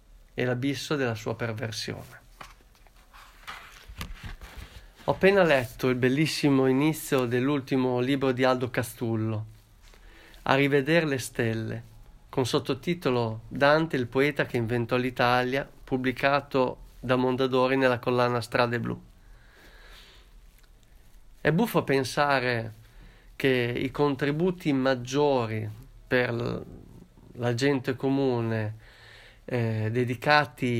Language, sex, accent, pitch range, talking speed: Italian, male, native, 115-140 Hz, 95 wpm